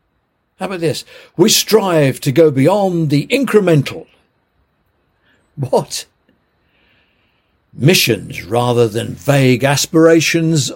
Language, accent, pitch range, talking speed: English, British, 115-160 Hz, 90 wpm